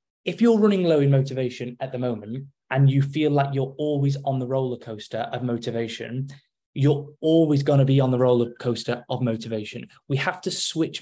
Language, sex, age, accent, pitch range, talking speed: English, male, 20-39, British, 125-150 Hz, 195 wpm